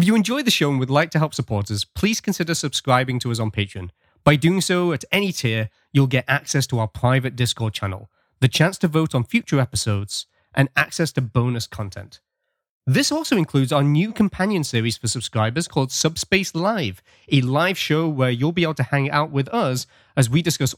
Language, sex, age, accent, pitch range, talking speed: English, male, 20-39, British, 115-160 Hz, 210 wpm